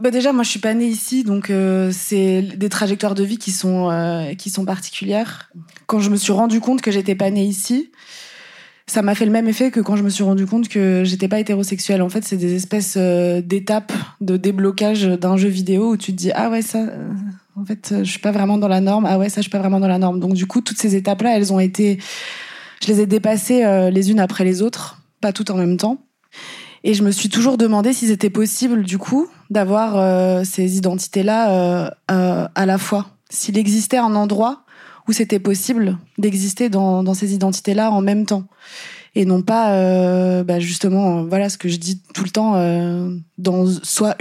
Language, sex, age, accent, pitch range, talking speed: French, female, 20-39, French, 185-215 Hz, 225 wpm